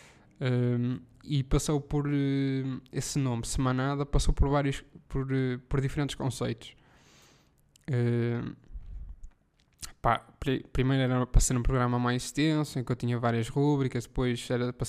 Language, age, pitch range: Portuguese, 10-29, 120-145 Hz